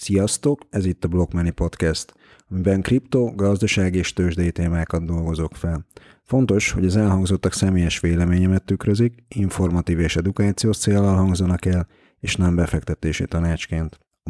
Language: Hungarian